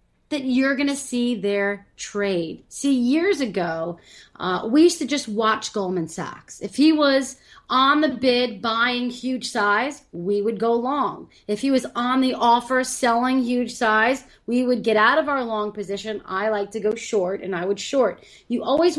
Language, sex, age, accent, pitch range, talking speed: English, female, 30-49, American, 205-260 Hz, 185 wpm